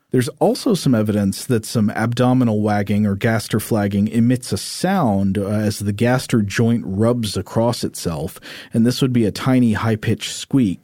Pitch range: 105-125 Hz